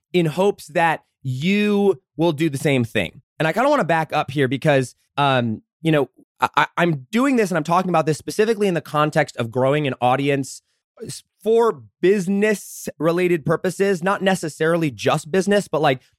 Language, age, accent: English, 20-39, American